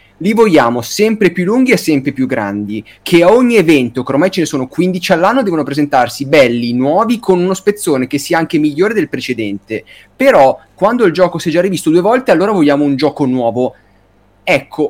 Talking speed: 195 wpm